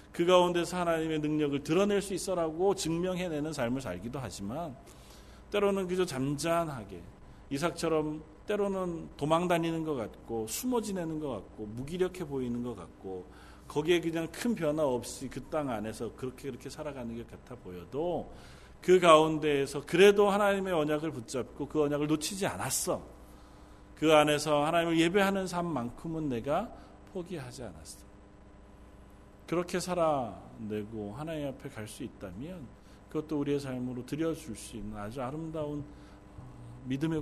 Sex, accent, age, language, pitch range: male, native, 40-59, Korean, 105-165 Hz